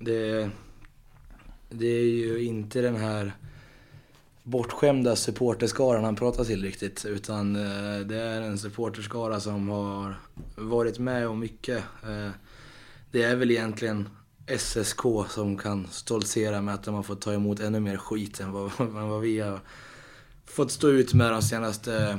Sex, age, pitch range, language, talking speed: male, 20-39, 105-120 Hz, Swedish, 145 wpm